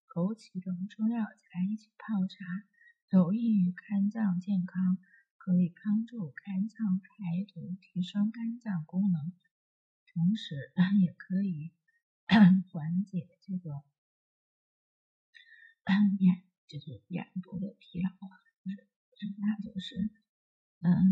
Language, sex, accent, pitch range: Chinese, female, native, 185-215 Hz